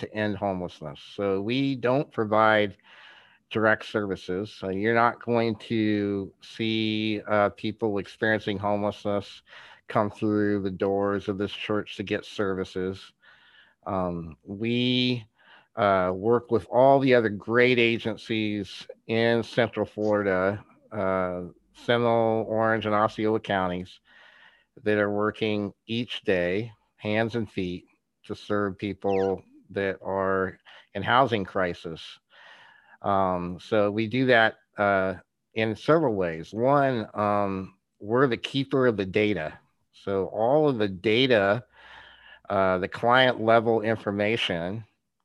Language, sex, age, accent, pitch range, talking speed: English, male, 50-69, American, 95-115 Hz, 120 wpm